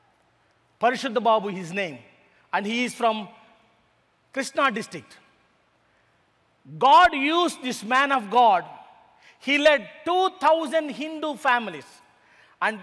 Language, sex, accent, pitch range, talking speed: English, male, Indian, 245-320 Hz, 105 wpm